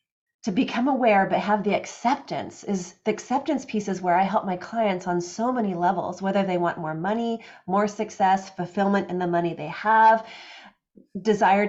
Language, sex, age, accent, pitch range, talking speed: English, female, 30-49, American, 185-225 Hz, 180 wpm